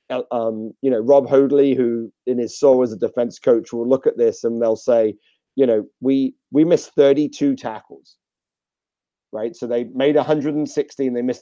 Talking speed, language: 180 wpm, English